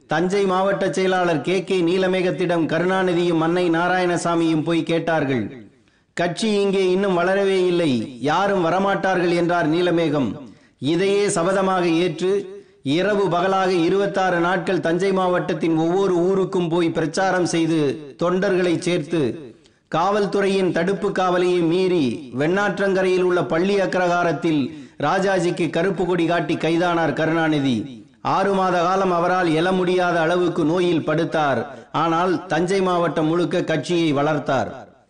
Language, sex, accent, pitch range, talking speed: Tamil, male, native, 165-190 Hz, 110 wpm